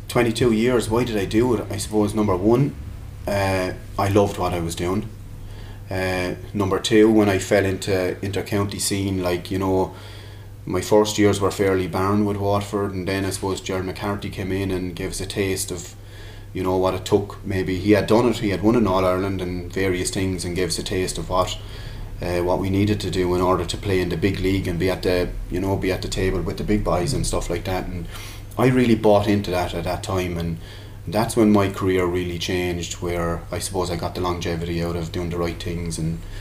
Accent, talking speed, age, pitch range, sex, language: Irish, 230 wpm, 30-49, 90-100 Hz, male, English